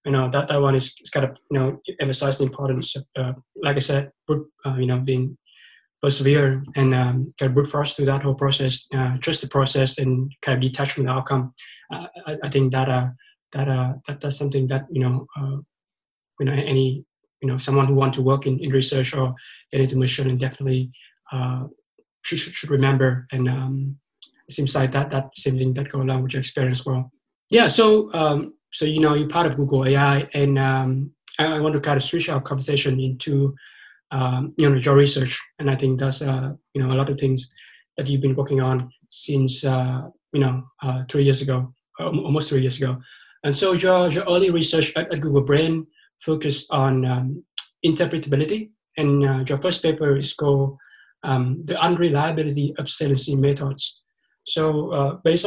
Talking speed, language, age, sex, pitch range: 200 wpm, English, 20-39, male, 130-150 Hz